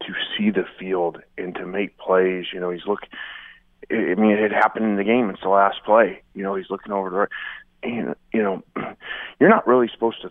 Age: 30-49